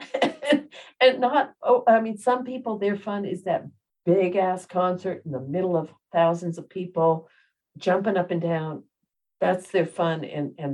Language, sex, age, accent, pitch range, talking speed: English, female, 50-69, American, 140-175 Hz, 160 wpm